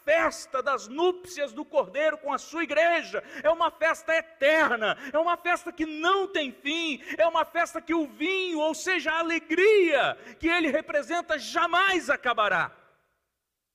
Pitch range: 220-335 Hz